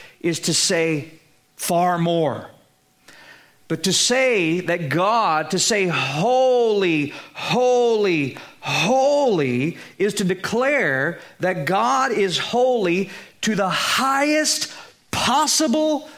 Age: 40-59